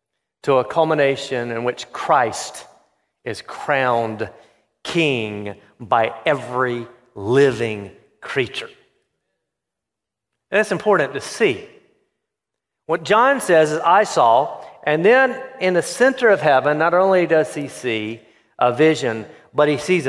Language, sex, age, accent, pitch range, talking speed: English, male, 50-69, American, 145-185 Hz, 120 wpm